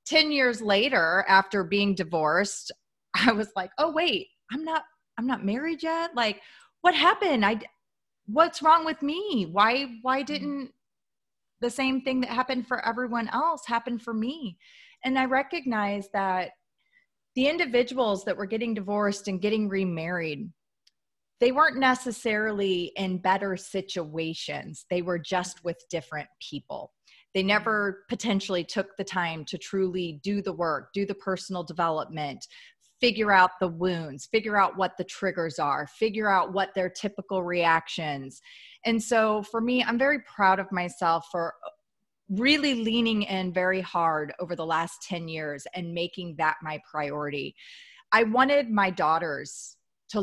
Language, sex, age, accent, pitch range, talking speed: English, female, 30-49, American, 175-245 Hz, 150 wpm